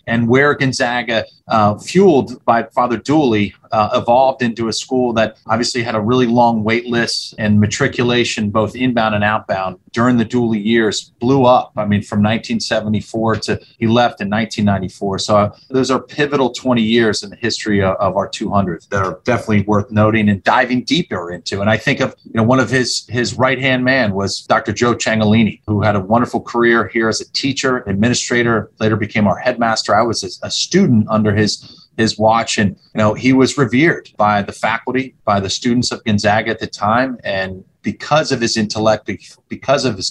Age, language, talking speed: 30-49, English, 190 wpm